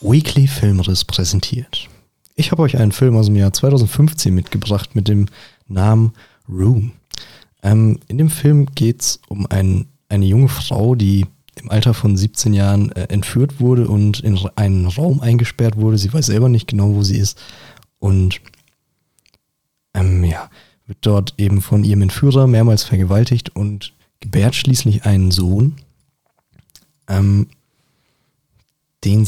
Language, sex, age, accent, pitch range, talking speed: German, male, 40-59, German, 100-125 Hz, 140 wpm